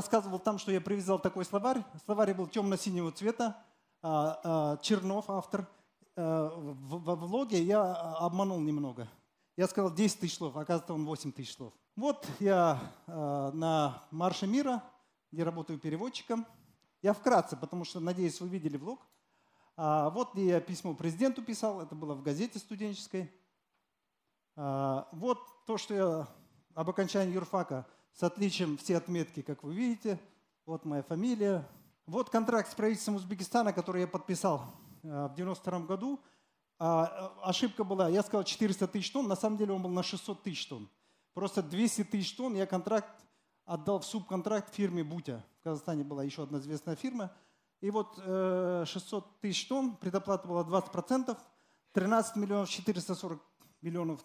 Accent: native